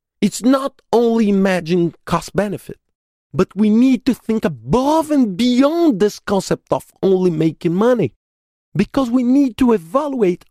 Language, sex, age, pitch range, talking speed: English, male, 50-69, 150-235 Hz, 145 wpm